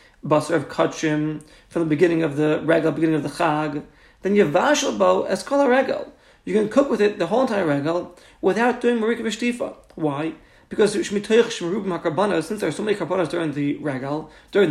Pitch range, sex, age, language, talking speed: 170-215 Hz, male, 40-59, English, 190 wpm